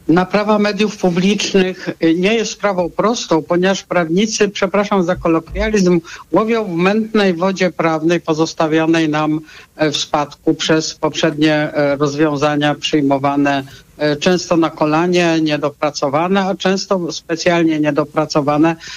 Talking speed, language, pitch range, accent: 105 wpm, Polish, 155-195 Hz, native